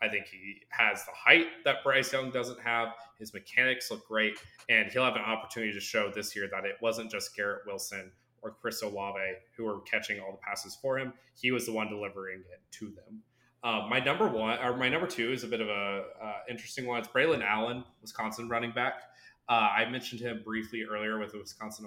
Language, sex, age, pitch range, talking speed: English, male, 20-39, 105-120 Hz, 220 wpm